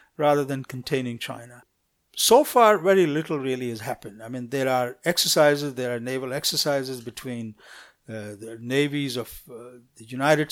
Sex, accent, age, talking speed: male, Indian, 50-69, 160 wpm